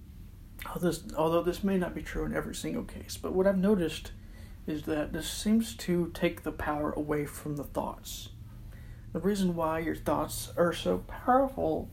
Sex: male